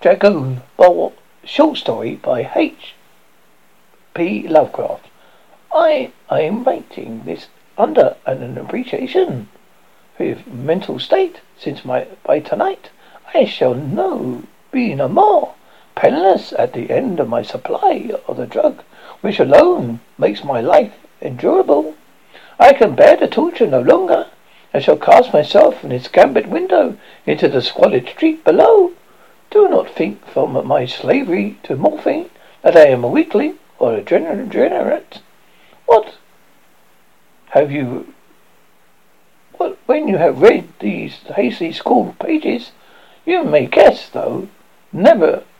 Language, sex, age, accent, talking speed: English, male, 60-79, British, 130 wpm